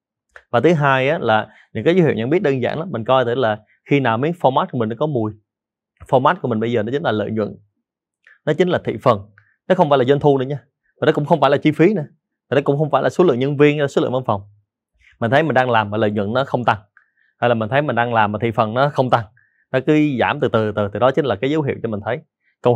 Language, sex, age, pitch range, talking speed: Vietnamese, male, 20-39, 115-145 Hz, 300 wpm